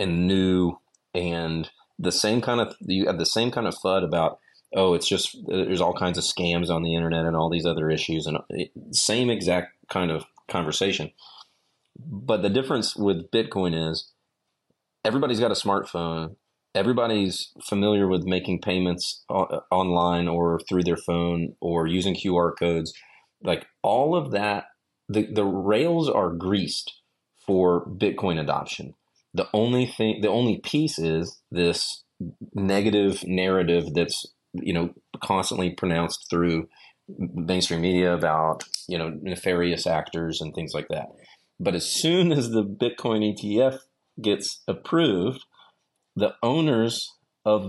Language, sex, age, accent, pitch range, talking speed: English, male, 30-49, American, 85-105 Hz, 140 wpm